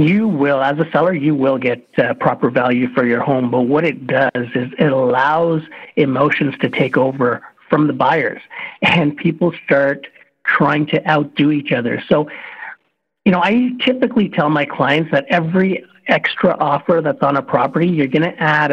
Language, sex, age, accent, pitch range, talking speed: English, male, 50-69, American, 135-160 Hz, 180 wpm